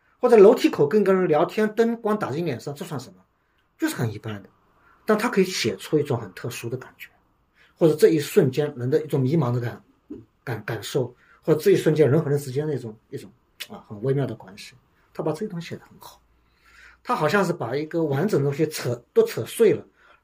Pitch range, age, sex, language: 145-210 Hz, 50-69, male, Chinese